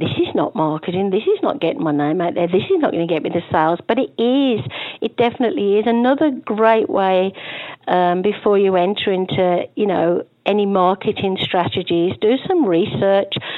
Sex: female